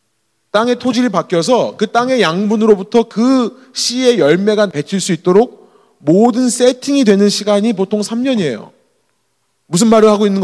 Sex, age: male, 30-49